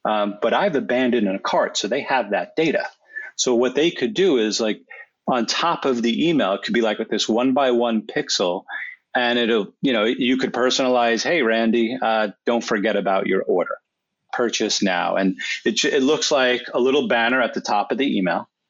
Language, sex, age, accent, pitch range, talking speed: English, male, 40-59, American, 115-135 Hz, 210 wpm